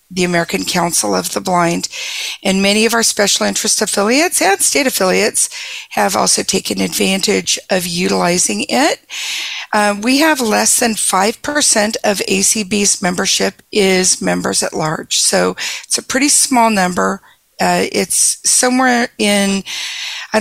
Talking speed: 140 wpm